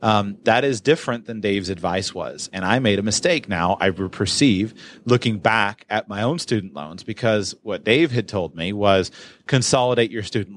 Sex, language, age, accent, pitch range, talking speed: male, English, 30-49, American, 95-115 Hz, 180 wpm